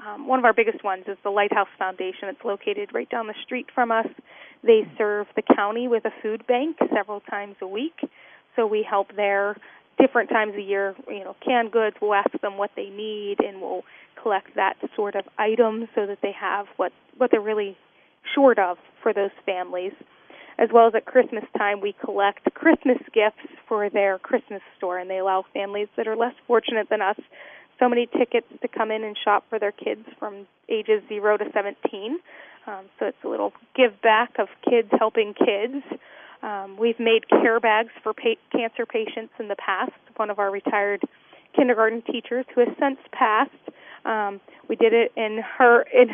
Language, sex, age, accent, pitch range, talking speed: English, female, 20-39, American, 205-240 Hz, 190 wpm